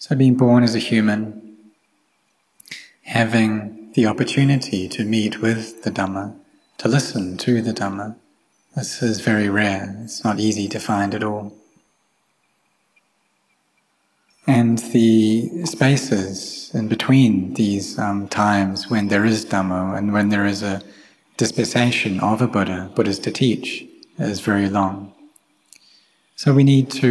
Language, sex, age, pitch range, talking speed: English, male, 30-49, 100-120 Hz, 135 wpm